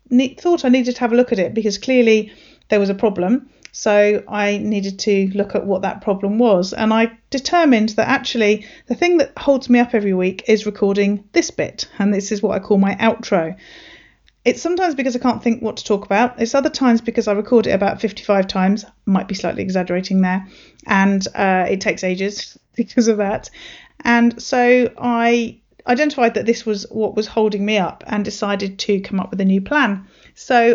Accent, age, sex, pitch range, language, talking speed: British, 40-59, female, 200-245 Hz, English, 205 wpm